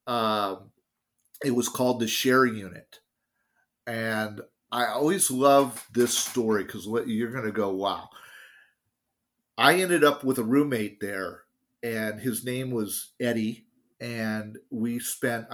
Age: 40-59